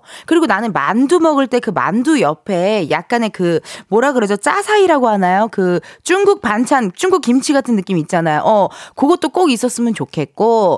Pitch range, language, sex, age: 190-320 Hz, Korean, female, 20-39